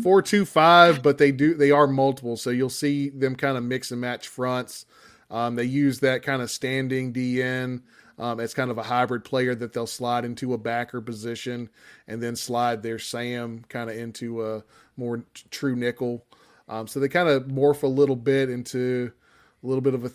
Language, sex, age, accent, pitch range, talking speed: English, male, 20-39, American, 115-140 Hz, 205 wpm